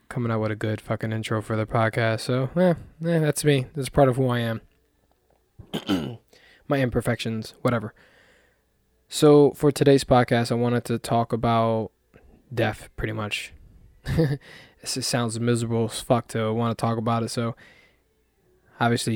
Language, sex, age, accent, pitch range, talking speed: English, male, 20-39, American, 115-135 Hz, 155 wpm